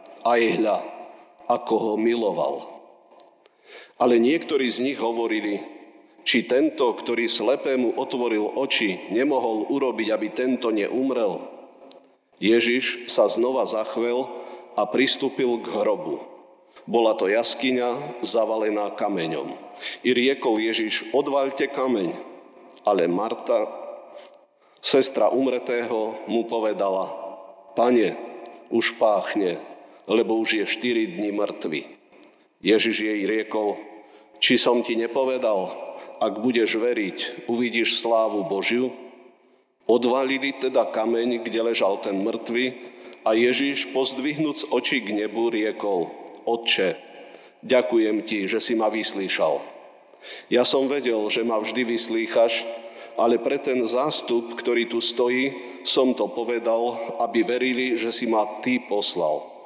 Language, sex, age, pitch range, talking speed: Slovak, male, 50-69, 110-125 Hz, 115 wpm